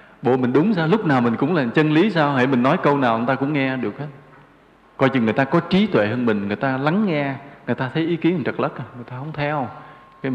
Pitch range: 115-170 Hz